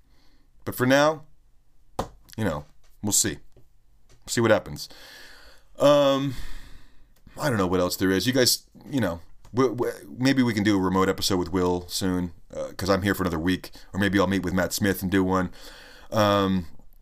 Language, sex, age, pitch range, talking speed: English, male, 30-49, 95-125 Hz, 185 wpm